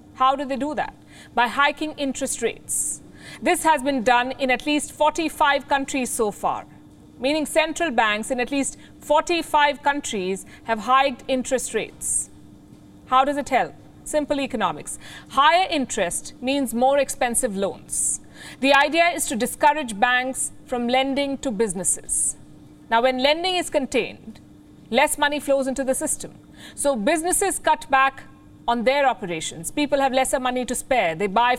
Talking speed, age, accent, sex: 150 wpm, 50-69, Indian, female